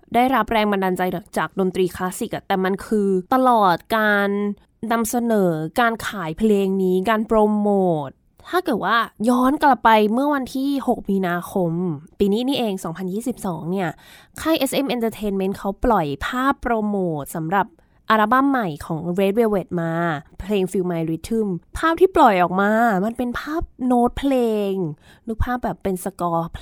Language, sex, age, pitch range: Thai, female, 20-39, 185-245 Hz